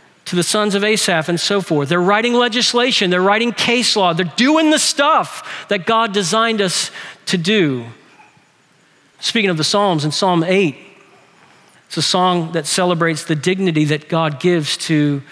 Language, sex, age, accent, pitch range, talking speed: English, male, 40-59, American, 165-230 Hz, 170 wpm